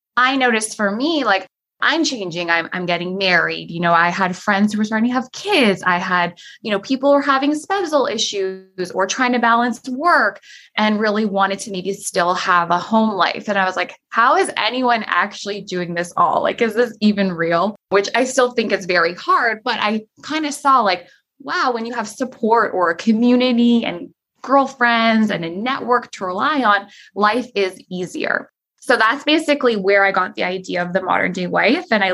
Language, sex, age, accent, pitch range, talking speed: English, female, 20-39, American, 190-250 Hz, 205 wpm